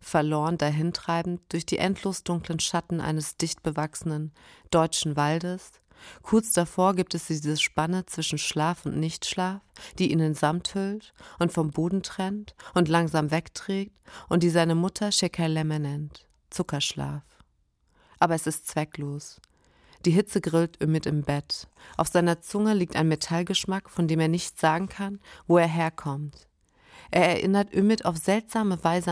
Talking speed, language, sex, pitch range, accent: 150 wpm, German, female, 150-175 Hz, German